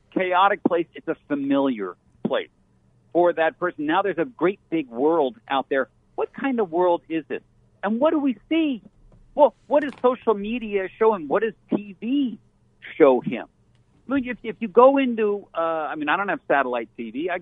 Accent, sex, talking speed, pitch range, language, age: American, male, 185 wpm, 140-225 Hz, English, 50-69